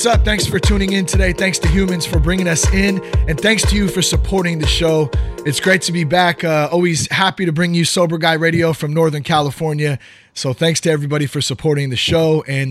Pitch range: 135-170 Hz